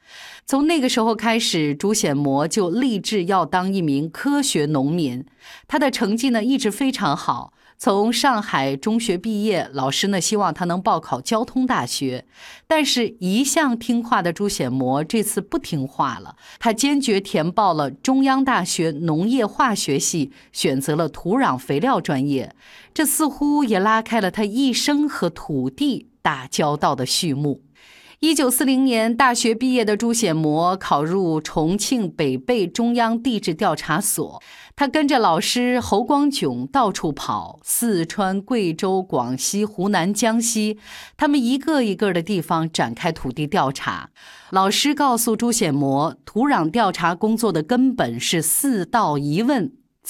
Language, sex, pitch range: Chinese, female, 165-255 Hz